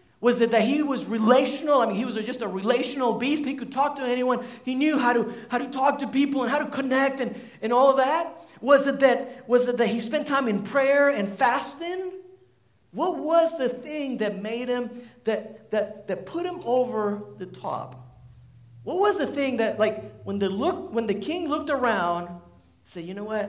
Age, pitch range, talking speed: 50-69, 155-250 Hz, 210 wpm